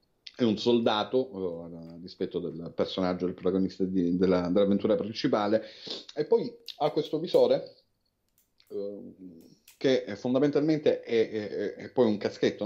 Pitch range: 100-145 Hz